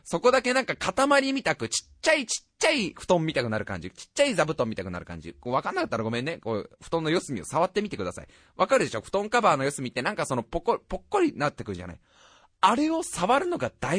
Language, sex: Japanese, male